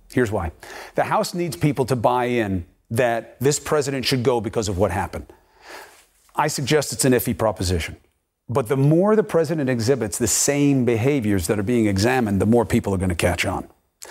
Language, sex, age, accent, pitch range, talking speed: English, male, 50-69, American, 110-160 Hz, 190 wpm